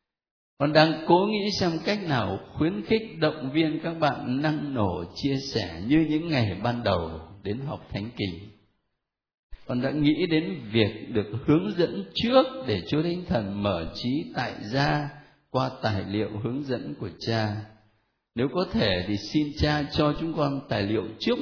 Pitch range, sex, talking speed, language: 110-155 Hz, male, 175 wpm, Vietnamese